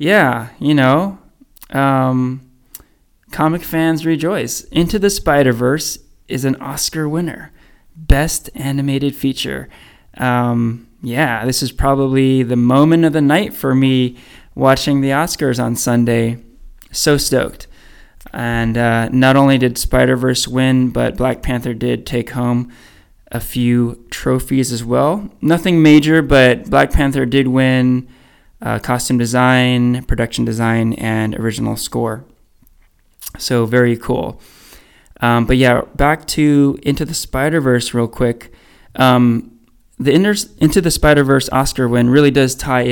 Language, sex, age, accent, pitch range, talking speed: English, male, 20-39, American, 120-145 Hz, 130 wpm